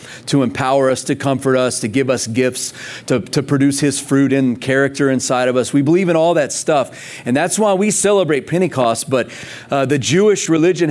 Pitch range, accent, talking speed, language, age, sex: 130-160 Hz, American, 205 wpm, English, 30-49, male